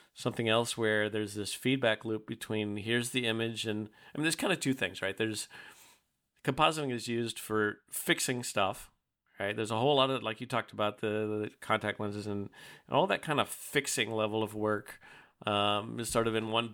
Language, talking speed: English, 205 wpm